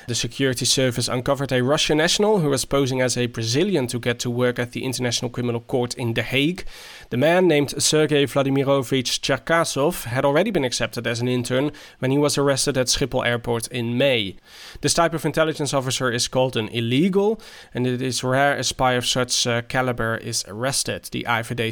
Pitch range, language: 125-145 Hz, English